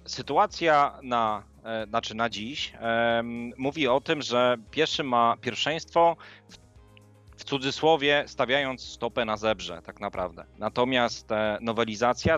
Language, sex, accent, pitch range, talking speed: Polish, male, native, 105-120 Hz, 125 wpm